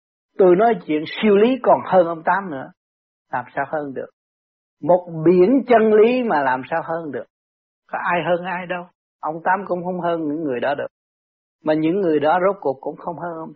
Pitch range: 175-265 Hz